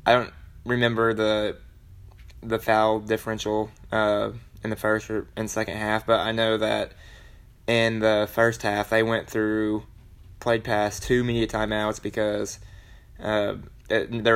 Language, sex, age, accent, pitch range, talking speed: English, male, 20-39, American, 105-115 Hz, 145 wpm